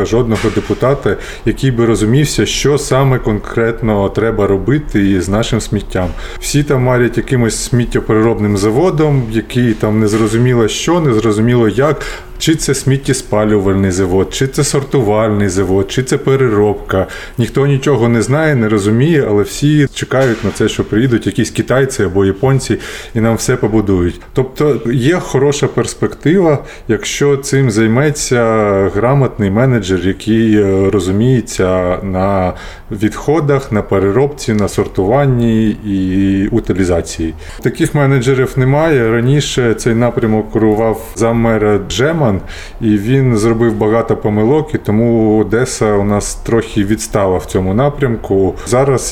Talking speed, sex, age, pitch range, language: 125 wpm, male, 30-49, 105-130 Hz, Ukrainian